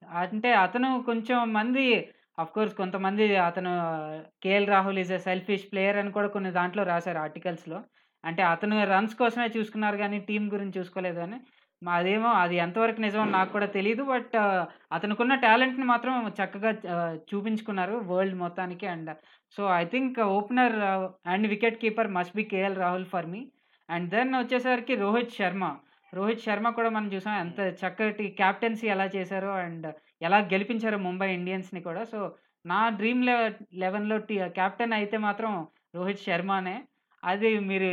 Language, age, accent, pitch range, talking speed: Telugu, 20-39, native, 185-230 Hz, 145 wpm